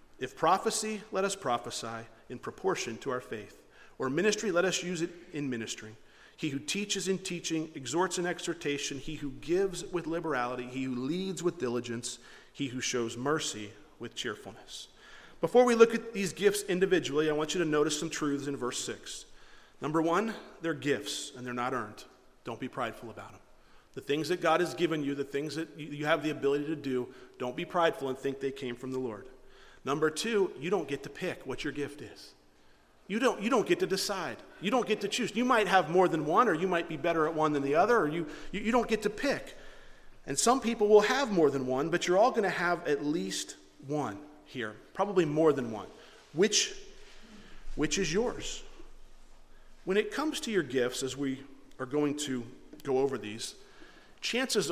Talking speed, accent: 205 wpm, American